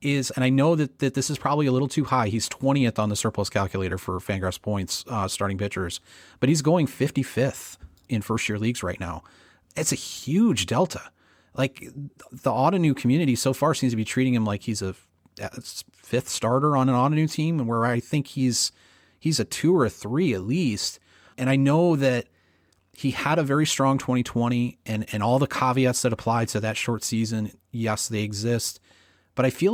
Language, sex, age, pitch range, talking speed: English, male, 30-49, 100-135 Hz, 200 wpm